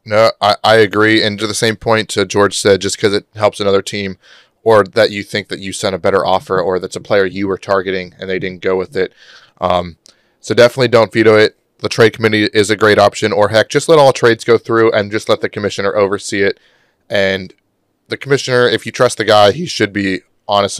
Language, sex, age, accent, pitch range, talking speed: English, male, 20-39, American, 100-115 Hz, 230 wpm